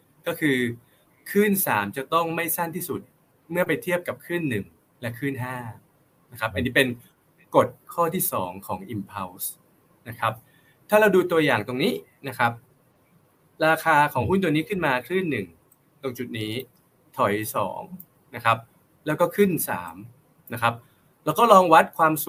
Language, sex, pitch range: Thai, male, 120-170 Hz